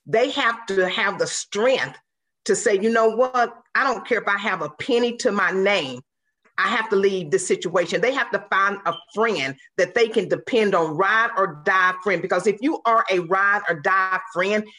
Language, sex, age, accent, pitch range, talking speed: English, female, 40-59, American, 185-225 Hz, 210 wpm